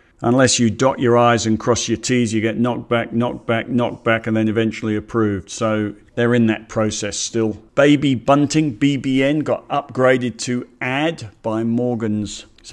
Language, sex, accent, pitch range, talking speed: English, male, British, 105-115 Hz, 175 wpm